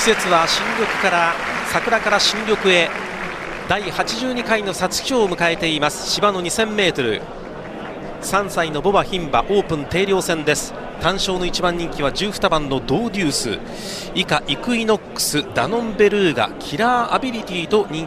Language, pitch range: Japanese, 155-205 Hz